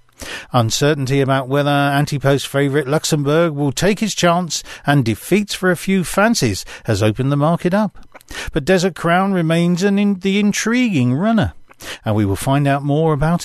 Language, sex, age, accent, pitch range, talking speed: English, male, 50-69, British, 130-185 Hz, 155 wpm